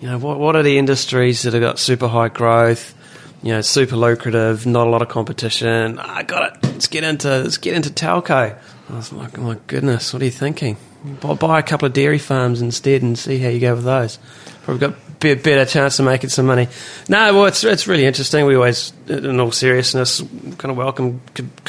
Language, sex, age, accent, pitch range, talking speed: English, male, 30-49, Australian, 120-135 Hz, 225 wpm